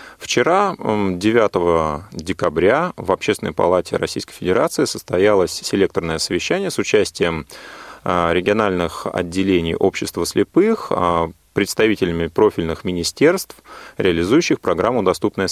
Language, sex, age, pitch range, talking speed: Russian, male, 30-49, 85-110 Hz, 90 wpm